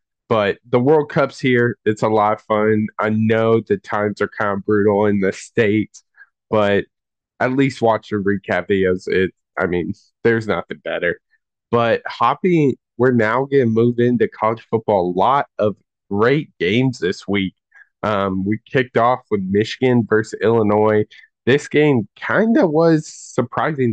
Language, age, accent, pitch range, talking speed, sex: English, 20-39, American, 100-120 Hz, 160 wpm, male